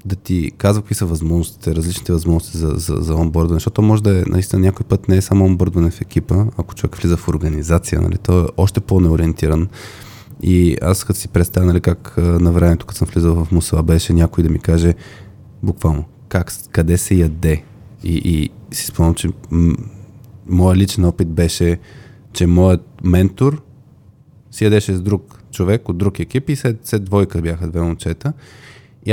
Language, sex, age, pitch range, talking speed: Bulgarian, male, 20-39, 85-115 Hz, 180 wpm